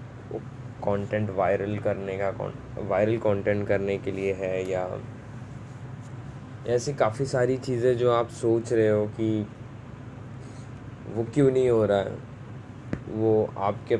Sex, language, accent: male, Hindi, native